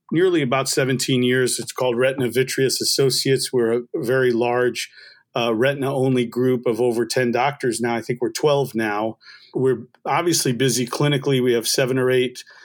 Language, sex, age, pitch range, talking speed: English, male, 40-59, 115-135 Hz, 165 wpm